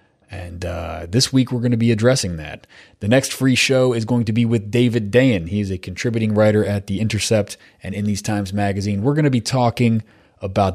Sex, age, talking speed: male, 30-49, 220 wpm